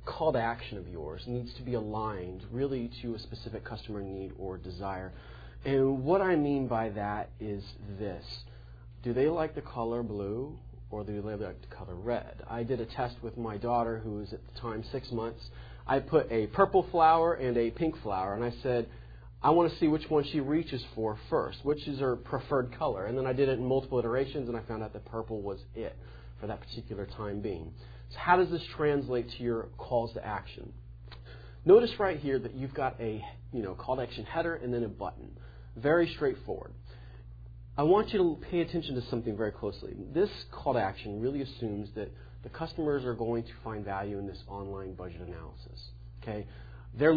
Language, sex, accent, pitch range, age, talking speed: English, male, American, 100-135 Hz, 30-49, 205 wpm